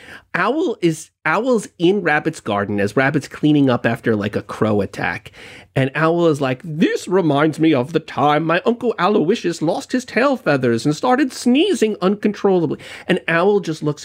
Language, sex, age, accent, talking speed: English, male, 30-49, American, 170 wpm